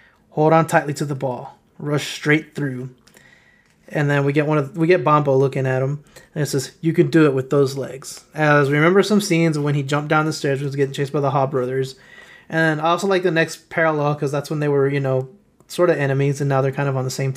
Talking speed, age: 260 wpm, 20-39